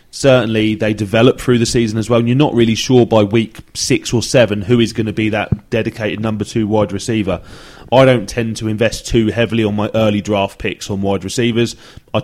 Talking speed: 220 wpm